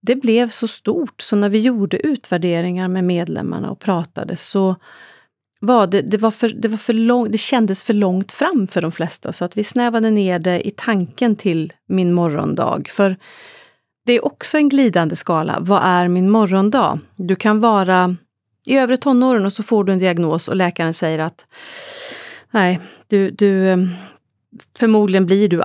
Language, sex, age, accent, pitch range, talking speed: Swedish, female, 30-49, native, 180-225 Hz, 165 wpm